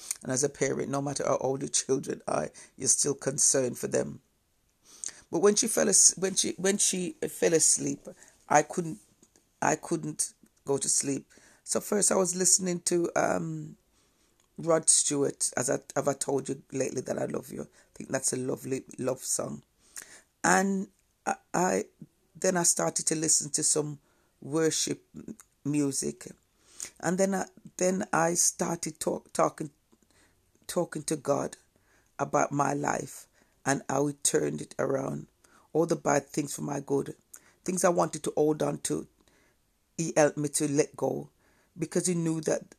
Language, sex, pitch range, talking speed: English, female, 145-175 Hz, 165 wpm